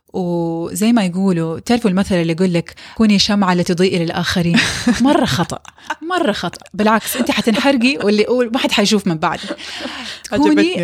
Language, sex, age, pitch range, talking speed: Arabic, female, 20-39, 185-245 Hz, 145 wpm